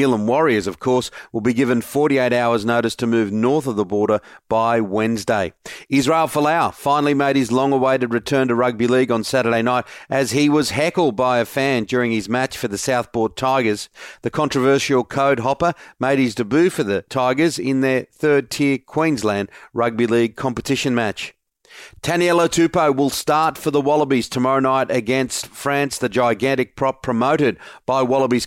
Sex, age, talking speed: male, 40-59, 165 wpm